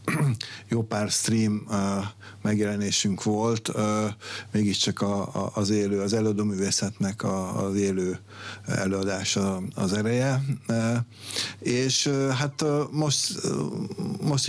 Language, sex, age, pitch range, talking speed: Hungarian, male, 60-79, 100-125 Hz, 85 wpm